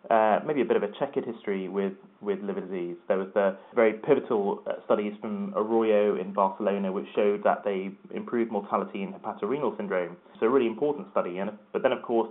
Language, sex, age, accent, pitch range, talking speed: English, male, 20-39, British, 105-135 Hz, 200 wpm